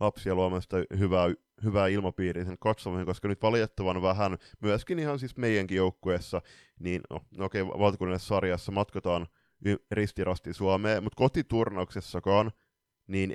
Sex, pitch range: male, 90-110 Hz